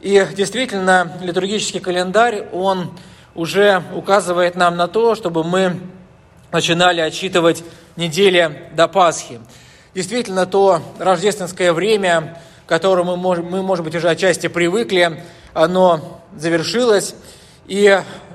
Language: Russian